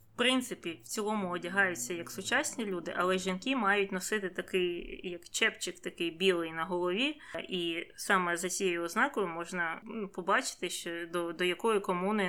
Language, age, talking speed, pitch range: Ukrainian, 20-39, 150 wpm, 180-225 Hz